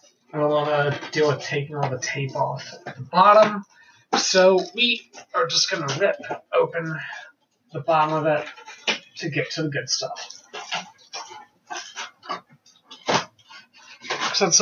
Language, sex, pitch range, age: English, male, 145-190 Hz, 30-49